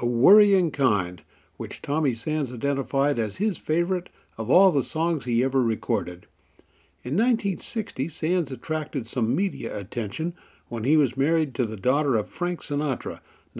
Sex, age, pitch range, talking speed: male, 60-79, 120-170 Hz, 150 wpm